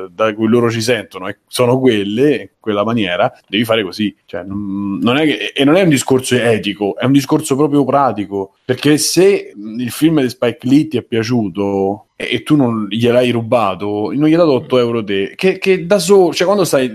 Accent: native